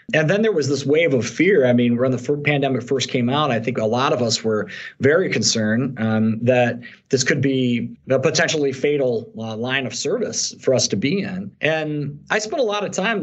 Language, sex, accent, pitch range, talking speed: English, male, American, 125-155 Hz, 225 wpm